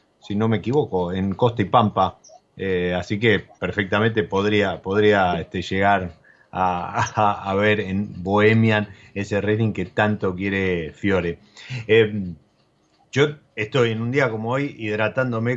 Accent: Argentinian